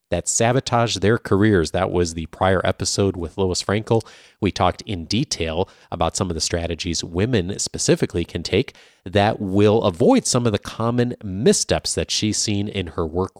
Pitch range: 90-115 Hz